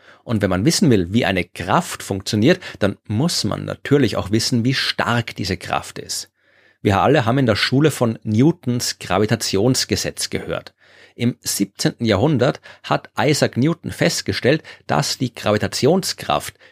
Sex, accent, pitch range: male, German, 100-130 Hz